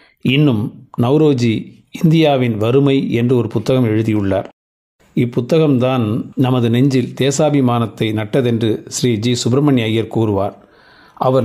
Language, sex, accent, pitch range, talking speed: Tamil, male, native, 115-135 Hz, 100 wpm